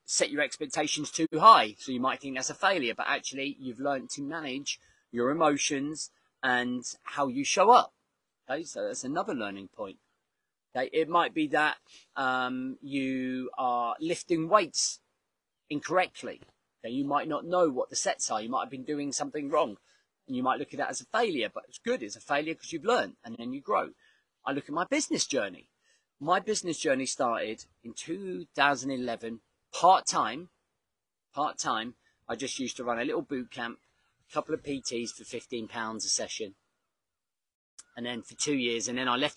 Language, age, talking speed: English, 30-49, 185 wpm